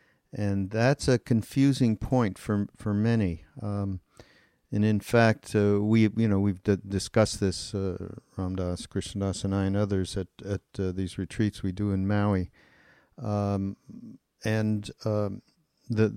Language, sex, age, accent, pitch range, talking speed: English, male, 50-69, American, 95-110 Hz, 150 wpm